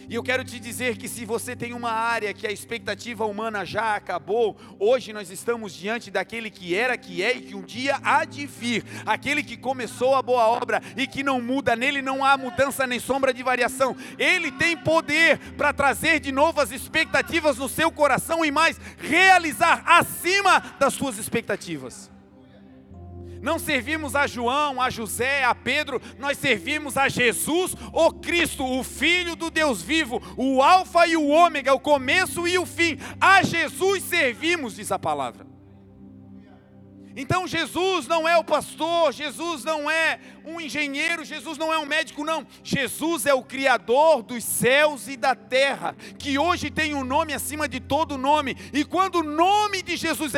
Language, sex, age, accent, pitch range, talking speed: Portuguese, male, 40-59, Brazilian, 240-320 Hz, 175 wpm